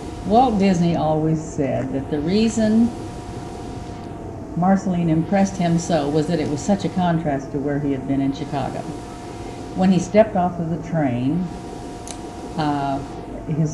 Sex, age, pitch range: female, 50-69, 140-170 Hz